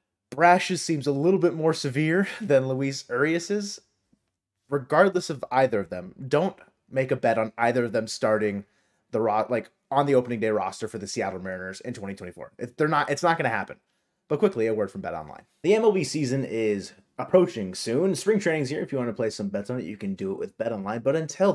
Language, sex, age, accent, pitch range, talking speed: English, male, 30-49, American, 110-165 Hz, 225 wpm